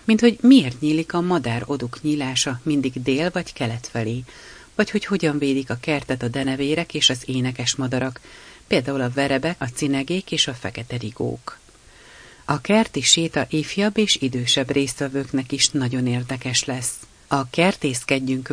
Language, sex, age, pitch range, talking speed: Hungarian, female, 40-59, 125-155 Hz, 150 wpm